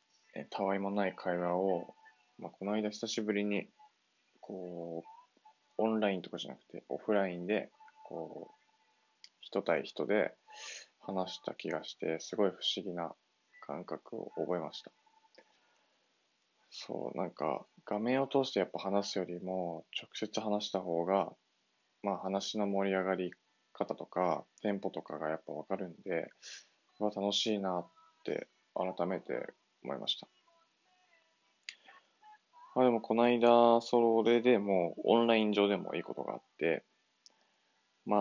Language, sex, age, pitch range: Japanese, male, 20-39, 95-125 Hz